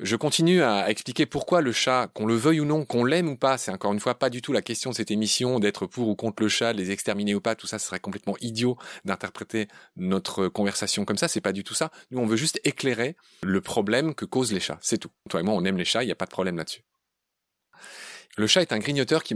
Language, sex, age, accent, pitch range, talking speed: French, male, 30-49, French, 100-130 Hz, 270 wpm